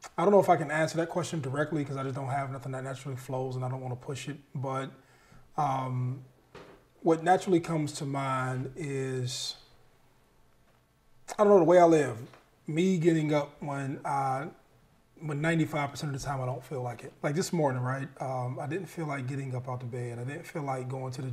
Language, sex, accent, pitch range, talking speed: English, male, American, 130-155 Hz, 215 wpm